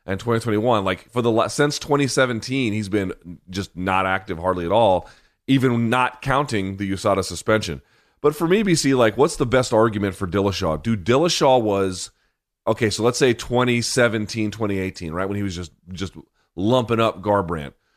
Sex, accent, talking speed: male, American, 165 wpm